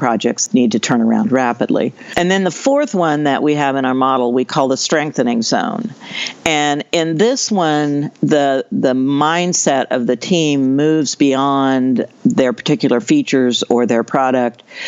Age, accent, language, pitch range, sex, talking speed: 60-79, American, English, 130-170 Hz, female, 160 wpm